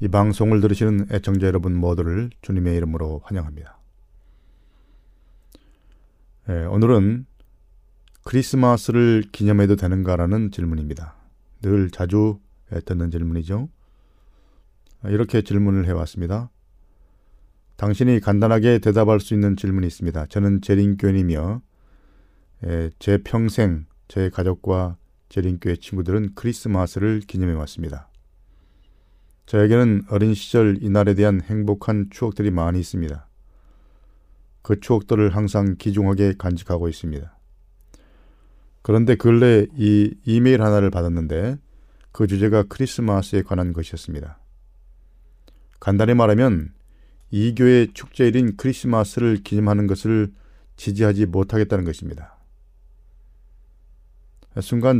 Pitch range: 85-105 Hz